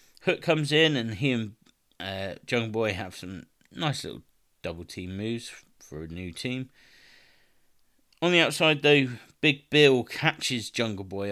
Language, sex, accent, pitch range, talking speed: English, male, British, 100-130 Hz, 155 wpm